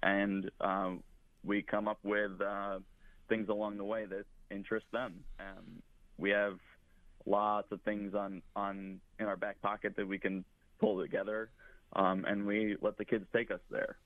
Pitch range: 95-105 Hz